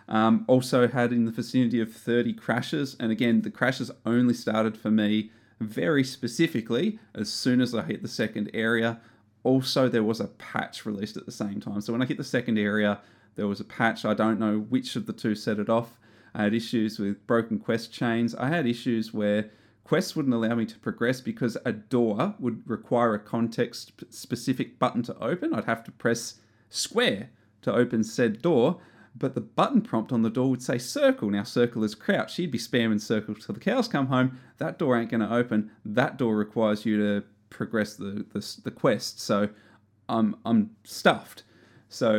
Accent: Australian